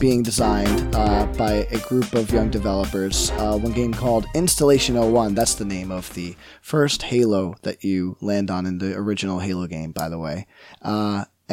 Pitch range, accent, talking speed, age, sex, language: 100-125 Hz, American, 180 wpm, 20-39, male, English